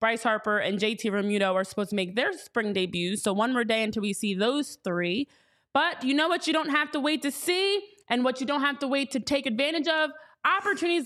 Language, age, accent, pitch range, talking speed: English, 20-39, American, 210-270 Hz, 240 wpm